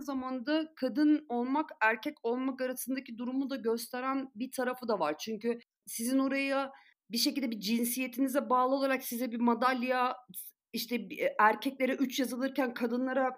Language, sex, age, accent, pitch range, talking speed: Turkish, female, 50-69, native, 215-270 Hz, 140 wpm